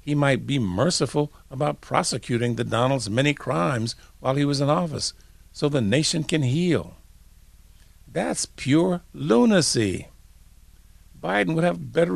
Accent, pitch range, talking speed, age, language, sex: American, 95-140 Hz, 135 wpm, 60-79, English, male